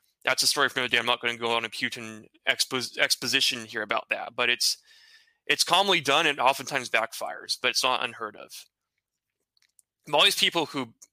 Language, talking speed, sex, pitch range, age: English, 200 wpm, male, 120-170 Hz, 20-39